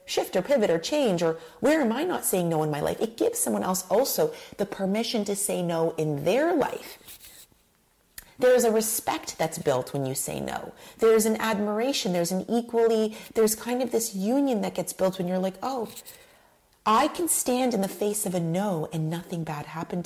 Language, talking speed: English, 205 wpm